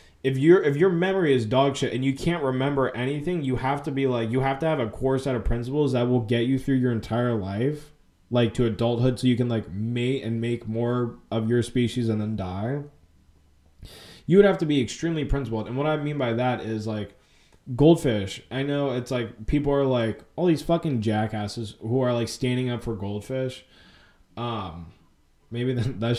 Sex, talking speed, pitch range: male, 205 wpm, 110-145 Hz